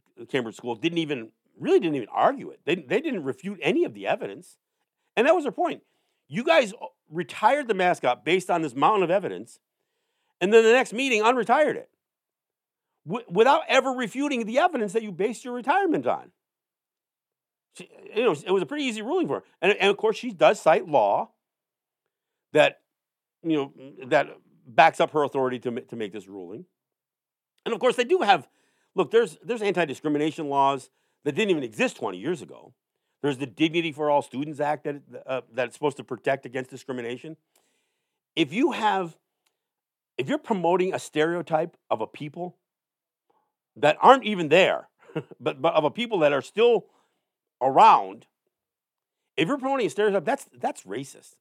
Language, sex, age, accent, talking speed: English, male, 50-69, American, 170 wpm